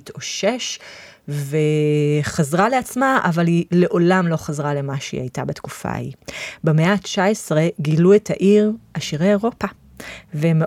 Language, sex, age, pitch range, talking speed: Hebrew, female, 30-49, 150-195 Hz, 125 wpm